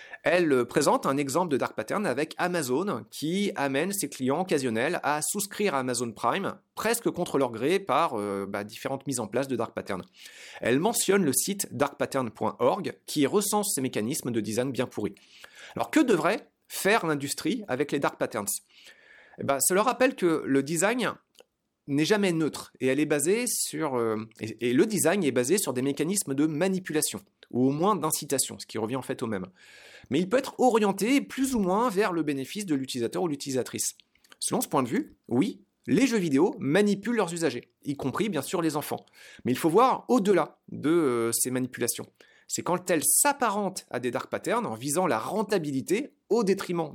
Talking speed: 185 wpm